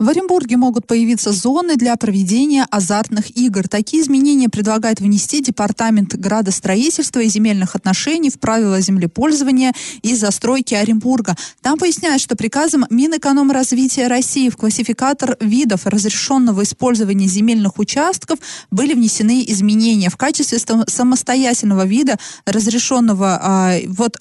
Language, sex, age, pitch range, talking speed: Russian, female, 20-39, 205-255 Hz, 115 wpm